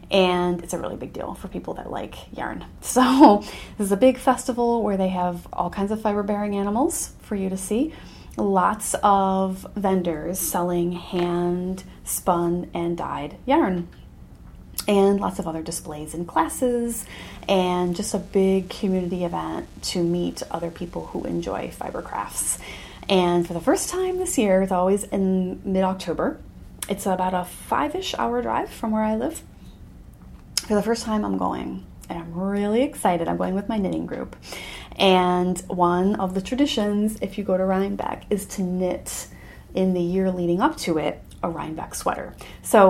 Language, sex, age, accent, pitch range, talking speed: English, female, 30-49, American, 180-215 Hz, 165 wpm